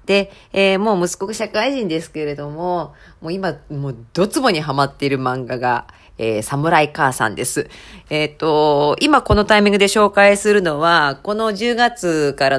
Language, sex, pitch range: Japanese, female, 140-195 Hz